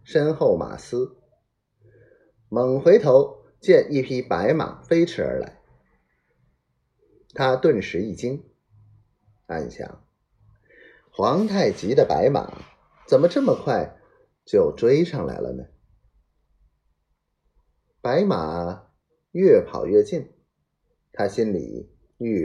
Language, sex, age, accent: Chinese, male, 30-49, native